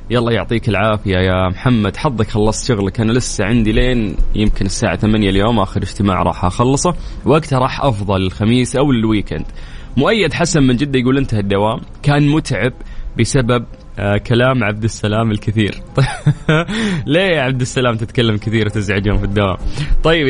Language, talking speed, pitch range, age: Arabic, 150 wpm, 105-135 Hz, 20-39